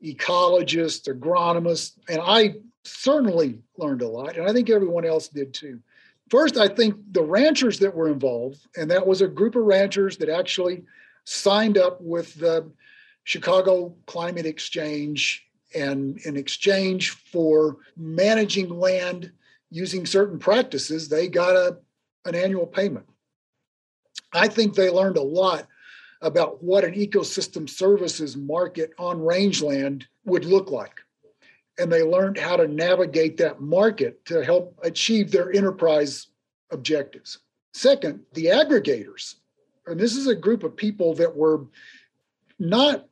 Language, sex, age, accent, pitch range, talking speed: English, male, 50-69, American, 165-220 Hz, 135 wpm